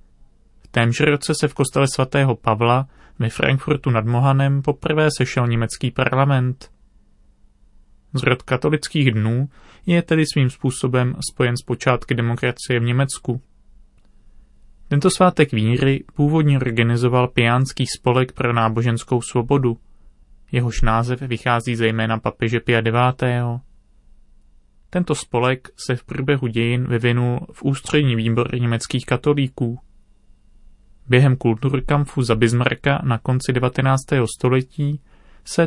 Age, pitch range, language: 30-49, 120-140 Hz, Czech